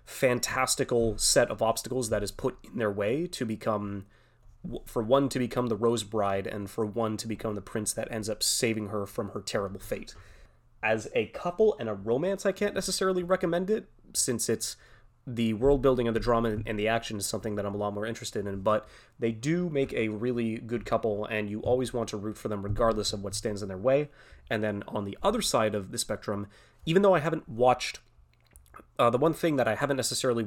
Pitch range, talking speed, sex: 105-125 Hz, 220 wpm, male